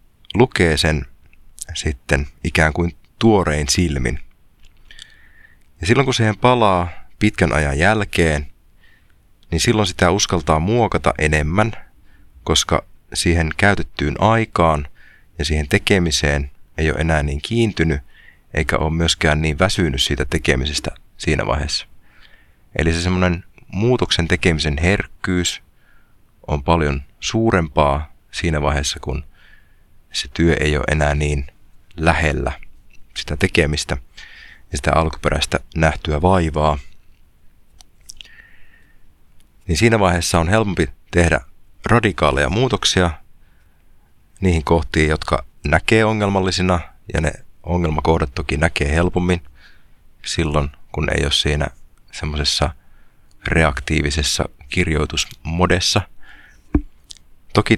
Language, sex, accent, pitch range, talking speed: Finnish, male, native, 75-90 Hz, 100 wpm